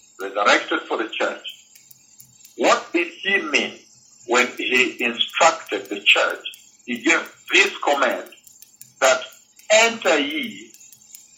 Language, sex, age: English, male, 60-79